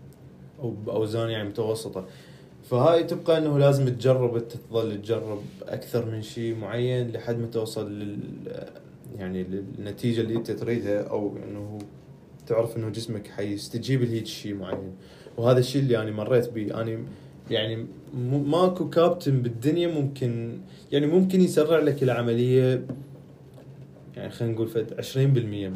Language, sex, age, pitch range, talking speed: Arabic, male, 20-39, 115-135 Hz, 130 wpm